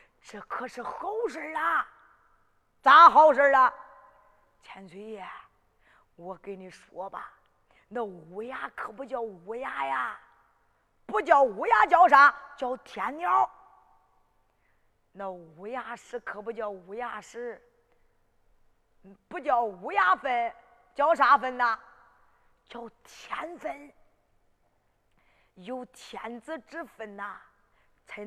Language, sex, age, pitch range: Chinese, female, 30-49, 210-305 Hz